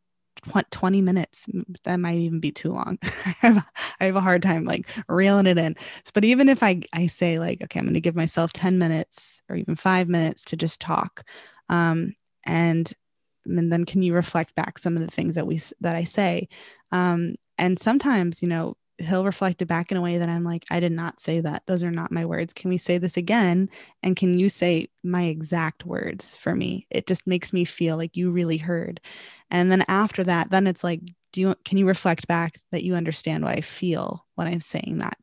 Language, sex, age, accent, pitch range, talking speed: English, female, 20-39, American, 165-185 Hz, 215 wpm